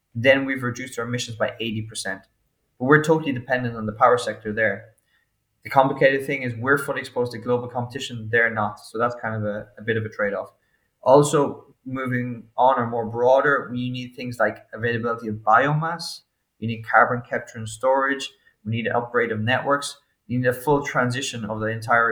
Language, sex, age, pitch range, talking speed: English, male, 20-39, 115-130 Hz, 195 wpm